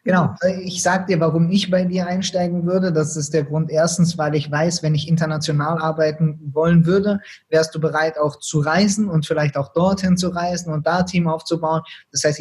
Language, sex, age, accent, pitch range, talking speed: German, male, 20-39, German, 150-180 Hz, 210 wpm